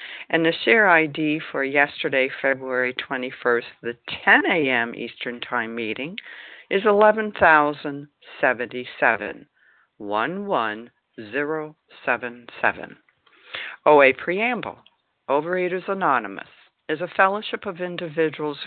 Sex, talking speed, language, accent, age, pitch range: female, 80 wpm, English, American, 60-79, 130-195 Hz